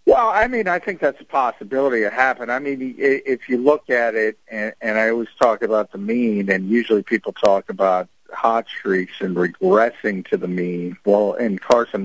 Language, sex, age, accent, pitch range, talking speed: English, male, 50-69, American, 100-130 Hz, 195 wpm